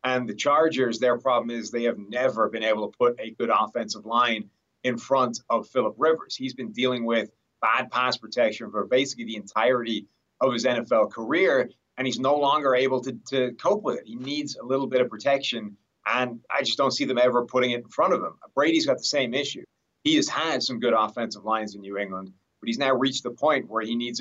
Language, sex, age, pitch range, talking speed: English, male, 30-49, 110-130 Hz, 225 wpm